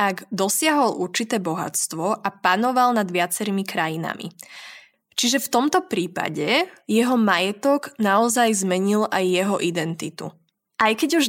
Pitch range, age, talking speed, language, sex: 185-235 Hz, 20-39, 120 wpm, Slovak, female